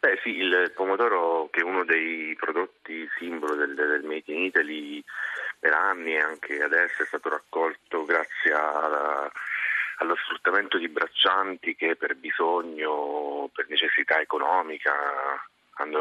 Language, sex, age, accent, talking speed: Italian, male, 30-49, native, 135 wpm